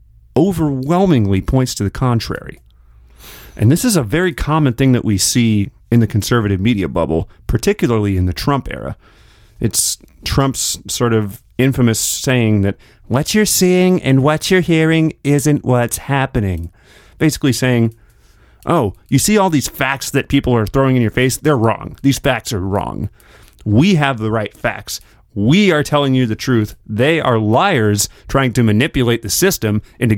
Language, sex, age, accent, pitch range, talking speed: English, male, 30-49, American, 105-135 Hz, 165 wpm